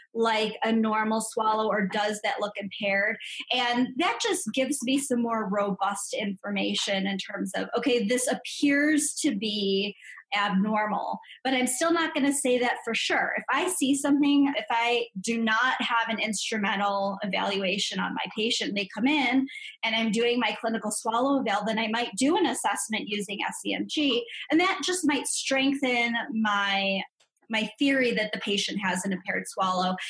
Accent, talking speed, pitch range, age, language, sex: American, 170 wpm, 205-260 Hz, 20-39, English, female